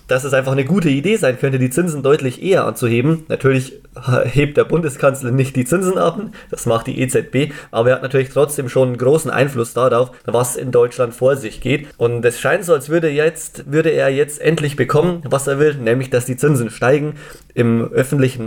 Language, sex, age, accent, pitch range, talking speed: German, male, 30-49, German, 130-155 Hz, 200 wpm